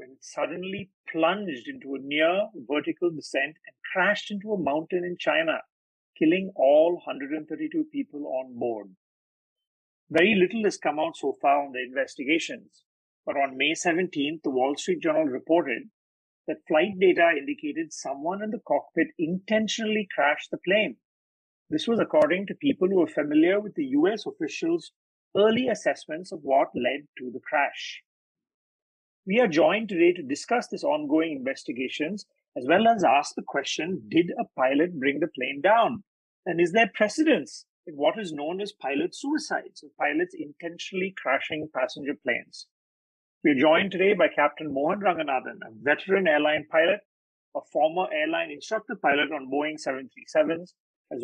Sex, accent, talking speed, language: male, Indian, 150 wpm, English